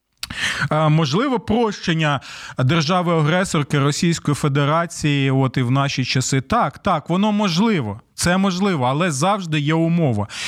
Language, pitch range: Ukrainian, 160-215 Hz